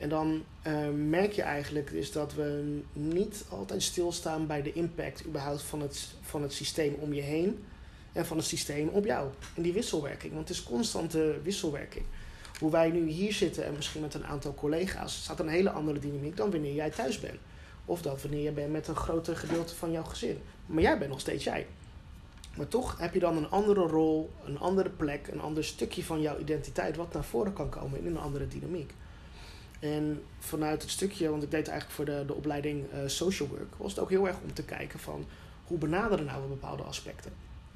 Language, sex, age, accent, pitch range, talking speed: Dutch, male, 20-39, Dutch, 145-170 Hz, 205 wpm